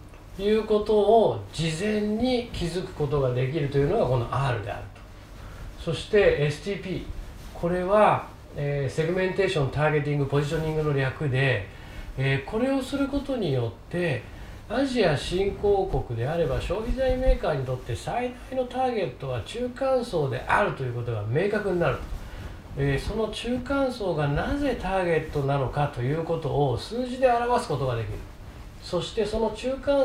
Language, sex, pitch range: Japanese, male, 130-200 Hz